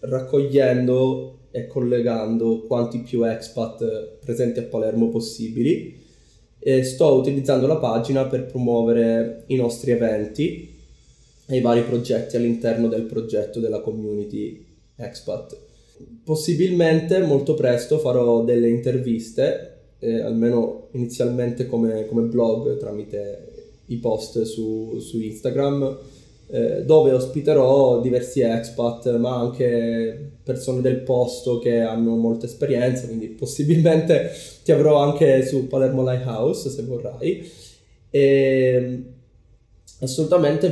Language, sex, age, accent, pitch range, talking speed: Italian, male, 20-39, native, 115-135 Hz, 105 wpm